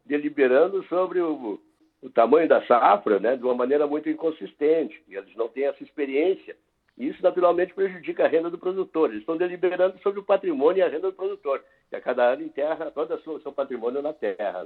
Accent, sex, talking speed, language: Brazilian, male, 200 wpm, Portuguese